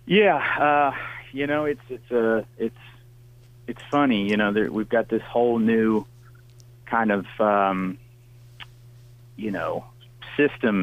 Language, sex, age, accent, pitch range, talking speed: English, male, 40-59, American, 110-120 Hz, 140 wpm